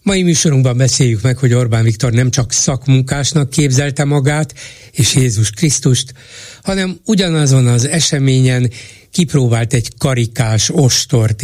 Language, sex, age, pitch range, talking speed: Hungarian, male, 60-79, 115-145 Hz, 120 wpm